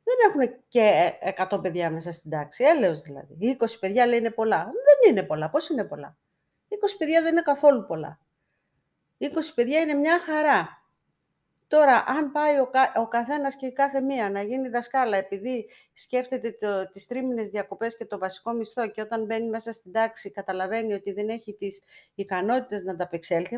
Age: 40-59